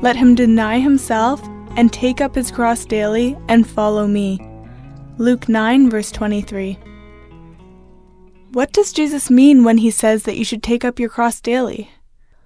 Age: 10-29